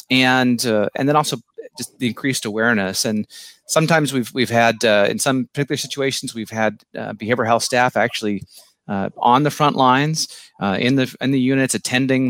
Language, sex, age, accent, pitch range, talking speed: English, male, 30-49, American, 115-135 Hz, 185 wpm